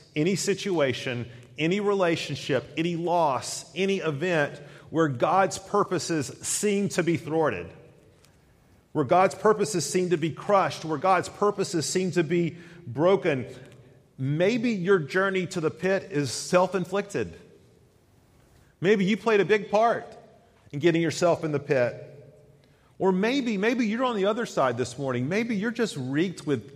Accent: American